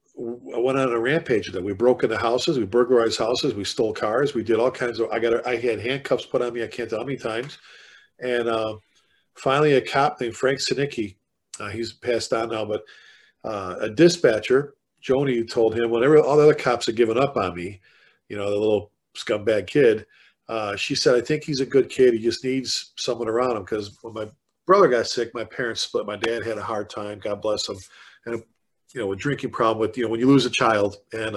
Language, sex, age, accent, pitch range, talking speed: English, male, 40-59, American, 115-140 Hz, 230 wpm